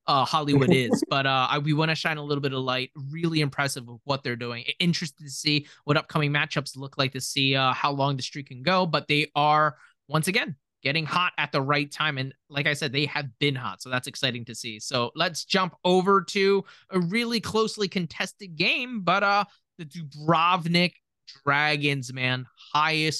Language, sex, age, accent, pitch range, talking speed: English, male, 20-39, American, 135-170 Hz, 200 wpm